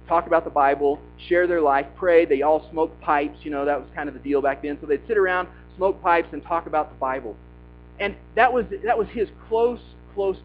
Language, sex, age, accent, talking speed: English, male, 40-59, American, 235 wpm